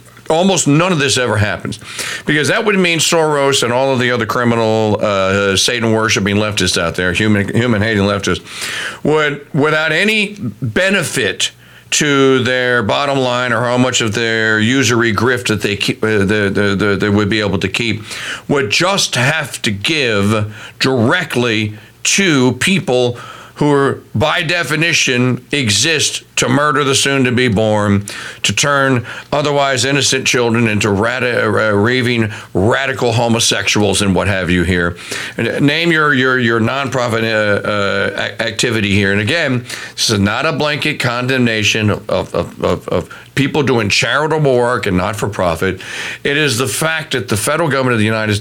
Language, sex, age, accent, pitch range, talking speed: English, male, 50-69, American, 110-150 Hz, 160 wpm